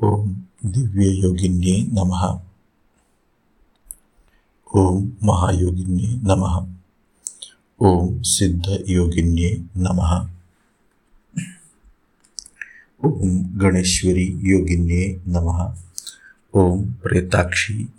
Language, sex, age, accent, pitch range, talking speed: Hindi, male, 50-69, native, 85-95 Hz, 45 wpm